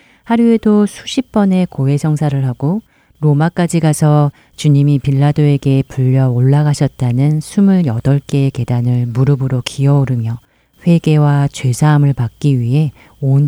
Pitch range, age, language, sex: 130-155 Hz, 40-59, Korean, female